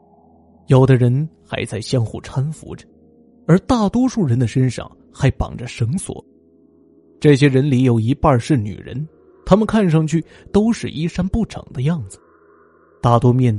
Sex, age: male, 20-39